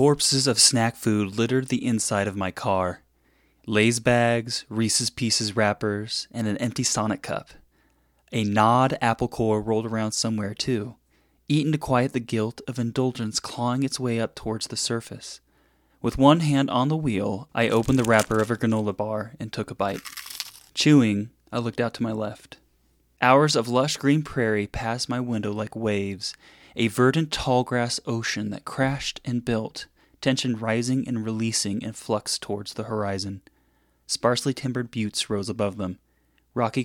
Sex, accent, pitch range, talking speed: male, American, 105-120 Hz, 165 wpm